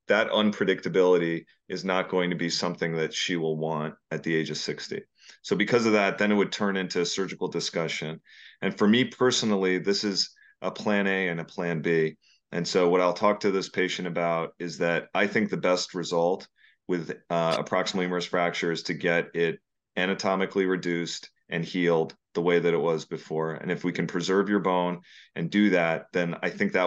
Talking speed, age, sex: 205 wpm, 30-49, male